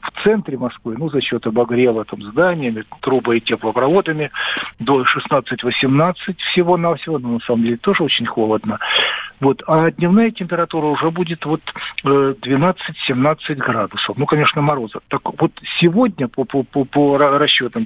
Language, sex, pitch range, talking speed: Russian, male, 125-175 Hz, 130 wpm